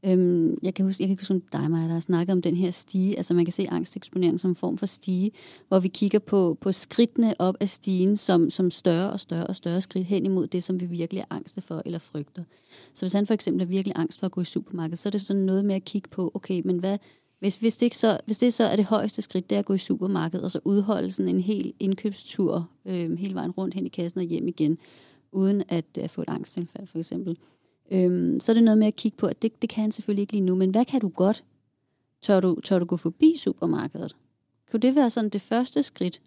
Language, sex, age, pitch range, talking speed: Danish, female, 30-49, 180-215 Hz, 260 wpm